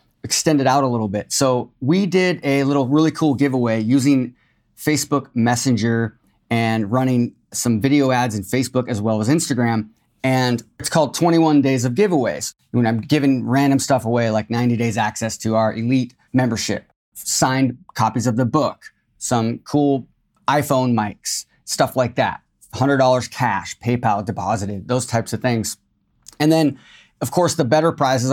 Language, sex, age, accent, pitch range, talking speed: English, male, 30-49, American, 115-140 Hz, 160 wpm